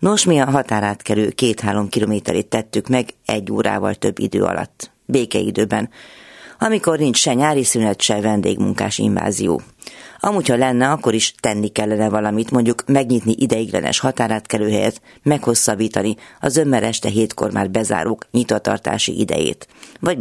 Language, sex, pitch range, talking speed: Hungarian, female, 105-130 Hz, 135 wpm